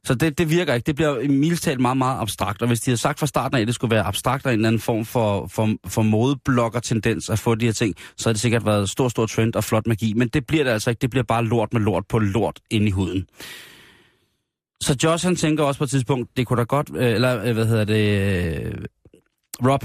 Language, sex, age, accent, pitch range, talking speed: Danish, male, 30-49, native, 110-145 Hz, 260 wpm